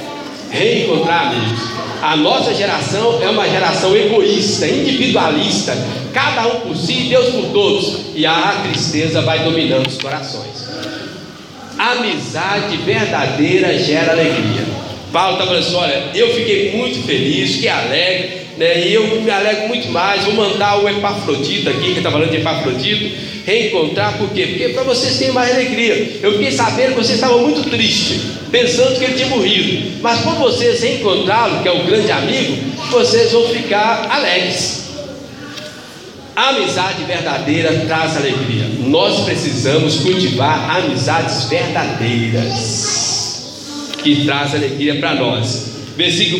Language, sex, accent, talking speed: Portuguese, male, Brazilian, 140 wpm